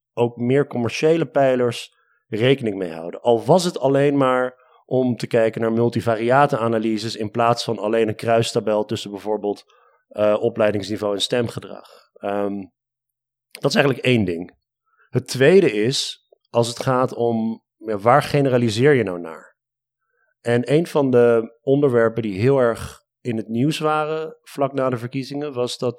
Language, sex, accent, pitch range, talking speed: Dutch, male, Dutch, 115-135 Hz, 150 wpm